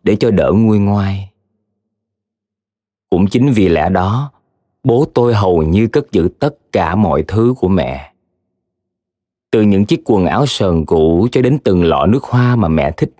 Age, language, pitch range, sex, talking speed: 20-39, Vietnamese, 90-120 Hz, male, 175 wpm